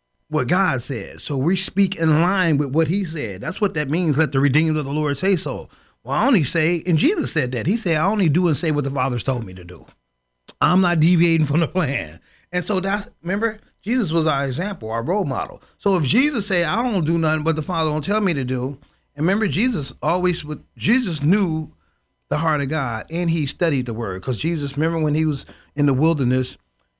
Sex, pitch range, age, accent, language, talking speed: male, 145-200 Hz, 40-59, American, English, 230 wpm